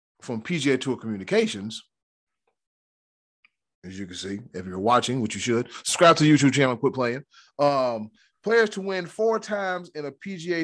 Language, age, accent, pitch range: English, 30-49, American, 125-180 Hz